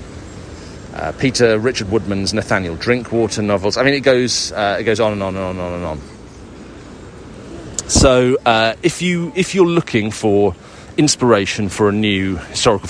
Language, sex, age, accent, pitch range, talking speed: English, male, 40-59, British, 95-125 Hz, 160 wpm